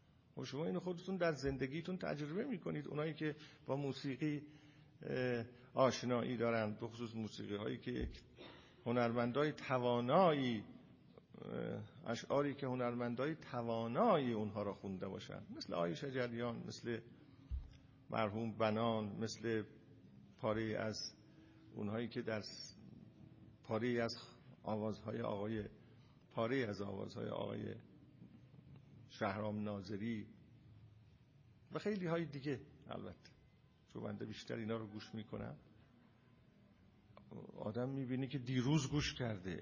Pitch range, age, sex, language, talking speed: 110-150 Hz, 50-69, male, Persian, 105 wpm